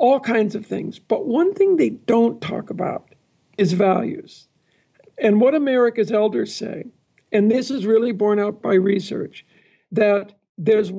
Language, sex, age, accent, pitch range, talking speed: English, male, 60-79, American, 210-255 Hz, 155 wpm